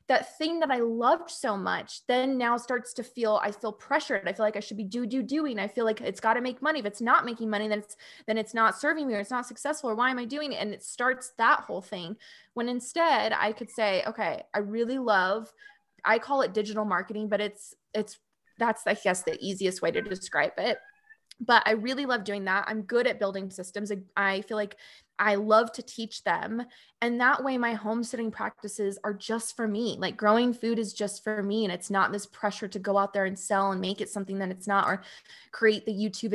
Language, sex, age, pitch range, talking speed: English, female, 20-39, 205-245 Hz, 240 wpm